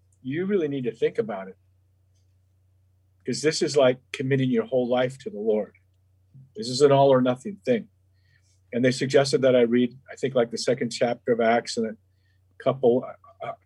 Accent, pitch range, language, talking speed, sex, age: American, 95-140 Hz, English, 190 wpm, male, 50-69